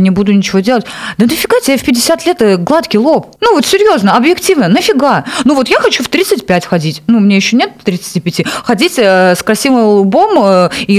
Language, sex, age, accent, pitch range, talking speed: Russian, female, 30-49, native, 200-280 Hz, 185 wpm